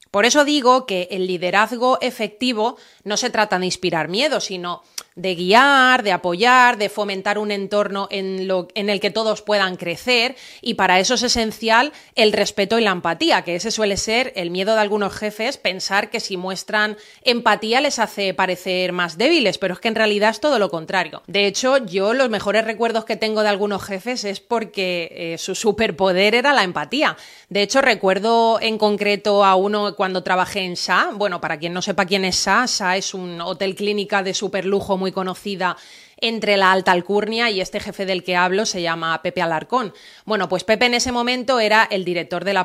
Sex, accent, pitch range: female, Spanish, 190-230 Hz